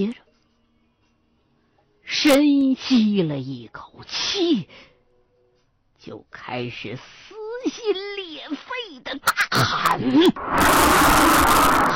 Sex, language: female, Chinese